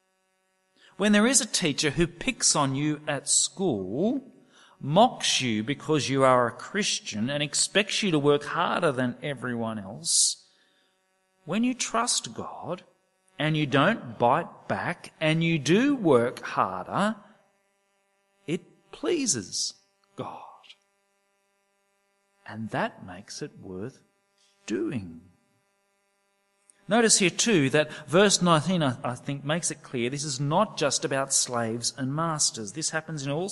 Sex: male